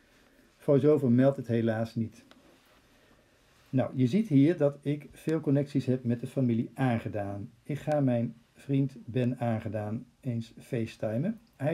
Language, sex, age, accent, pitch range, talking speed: Dutch, male, 50-69, Dutch, 120-150 Hz, 140 wpm